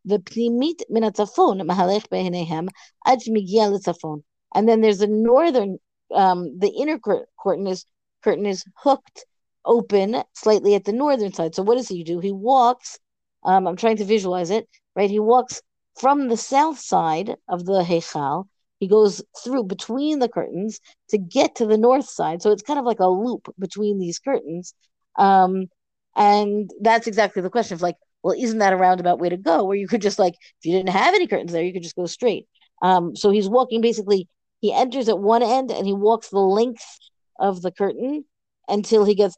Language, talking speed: English, 180 wpm